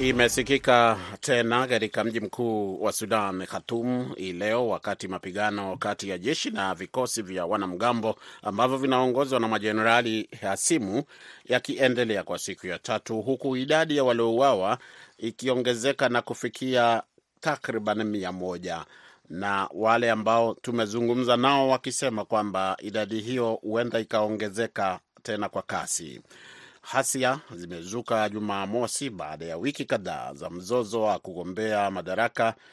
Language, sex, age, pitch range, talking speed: Swahili, male, 30-49, 105-120 Hz, 120 wpm